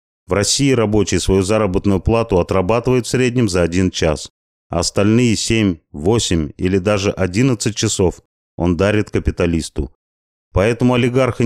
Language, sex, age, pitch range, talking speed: Russian, male, 30-49, 85-115 Hz, 130 wpm